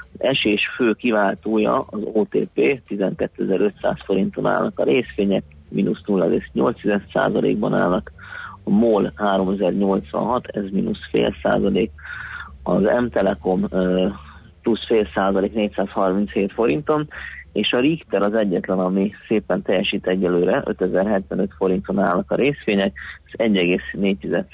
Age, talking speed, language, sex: 30-49, 105 wpm, Hungarian, male